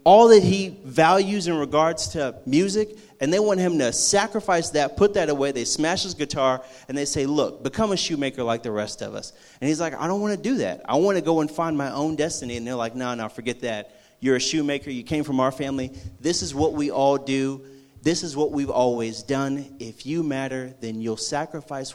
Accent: American